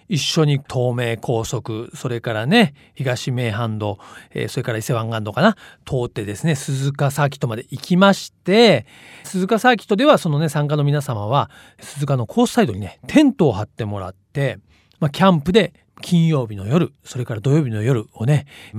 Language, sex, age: Japanese, male, 40-59